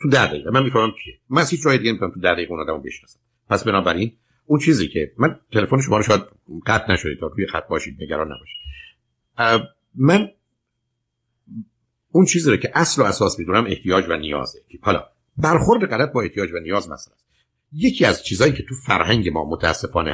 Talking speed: 180 wpm